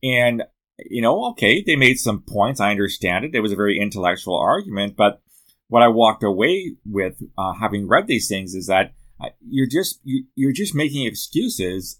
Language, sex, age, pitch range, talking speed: English, male, 30-49, 100-130 Hz, 185 wpm